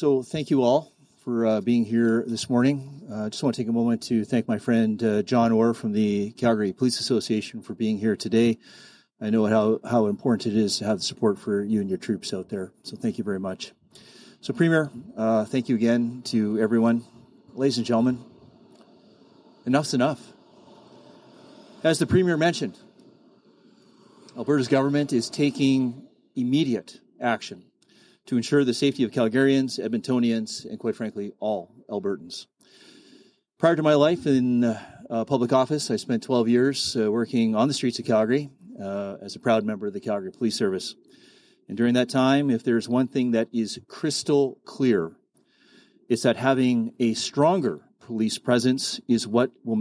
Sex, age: male, 30-49